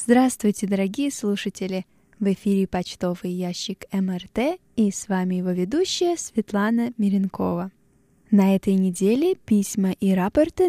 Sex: female